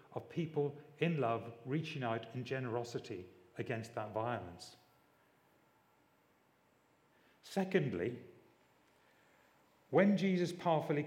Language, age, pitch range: English, 40-59, 115-145 Hz